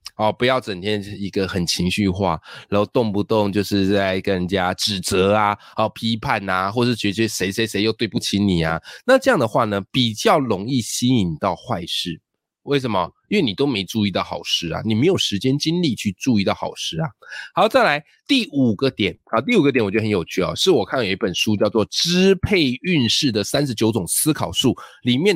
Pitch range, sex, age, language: 100-145 Hz, male, 20-39, Chinese